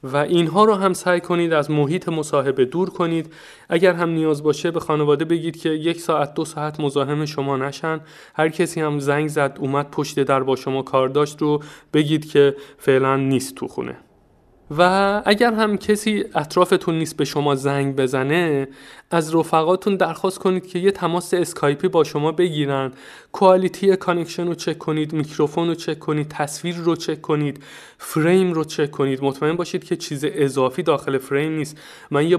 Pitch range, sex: 140-175 Hz, male